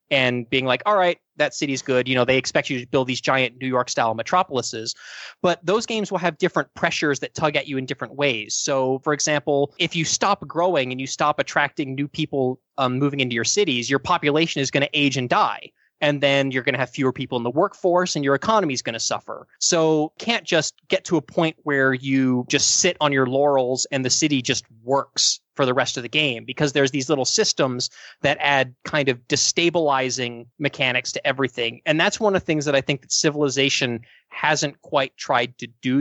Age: 20-39